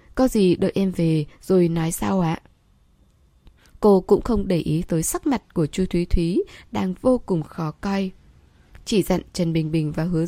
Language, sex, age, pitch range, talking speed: Vietnamese, female, 10-29, 165-220 Hz, 195 wpm